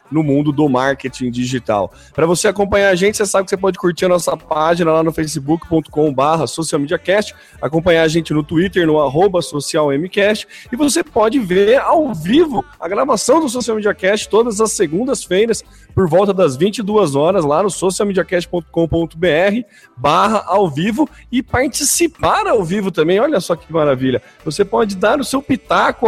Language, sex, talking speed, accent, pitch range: Portuguese, male, 165 wpm, Brazilian, 150-200 Hz